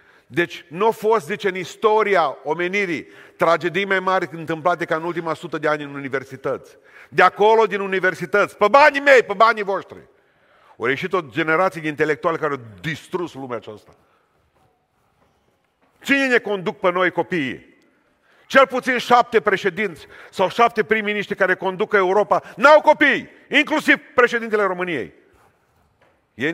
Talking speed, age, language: 145 wpm, 40-59, Romanian